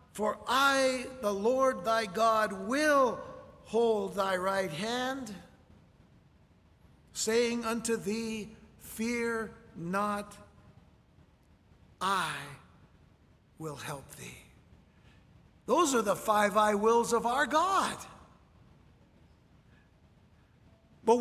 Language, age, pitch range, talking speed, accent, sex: English, 60-79, 225-265 Hz, 85 wpm, American, male